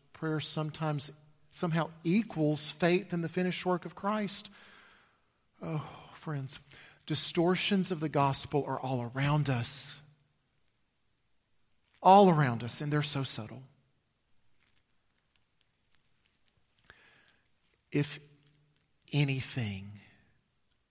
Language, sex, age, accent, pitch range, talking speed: English, male, 50-69, American, 145-190 Hz, 85 wpm